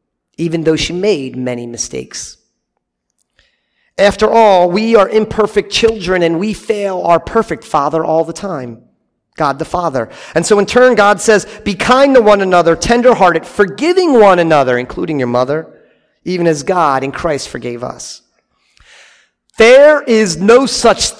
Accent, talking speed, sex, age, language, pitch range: American, 150 wpm, male, 40-59, English, 160-225 Hz